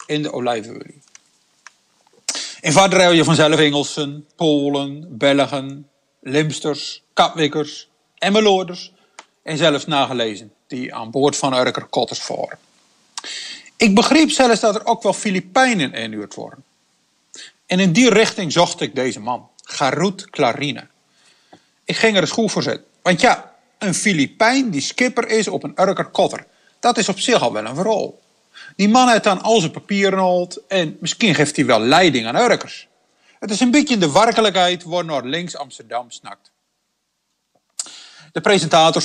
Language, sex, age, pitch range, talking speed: Dutch, male, 50-69, 140-200 Hz, 145 wpm